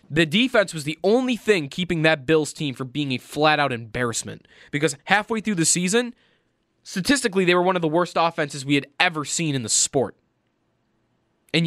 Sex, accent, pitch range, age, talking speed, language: male, American, 150-200 Hz, 20-39, 185 wpm, English